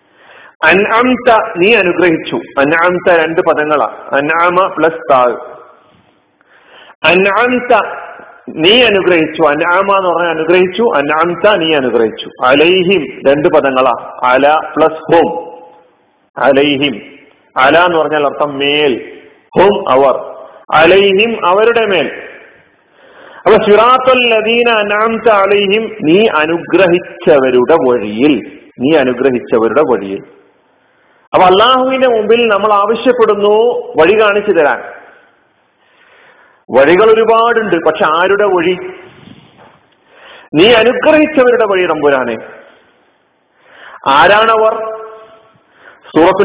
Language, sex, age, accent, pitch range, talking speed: Malayalam, male, 40-59, native, 165-225 Hz, 65 wpm